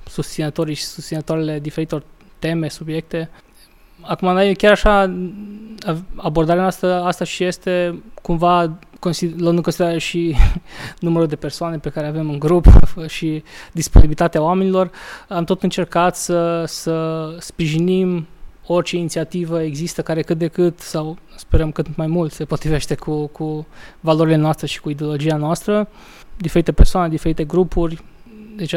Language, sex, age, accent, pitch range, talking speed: Romanian, male, 20-39, native, 155-175 Hz, 130 wpm